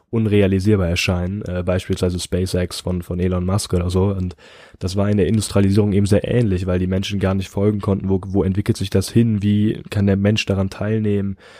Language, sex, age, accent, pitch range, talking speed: English, male, 10-29, German, 95-105 Hz, 195 wpm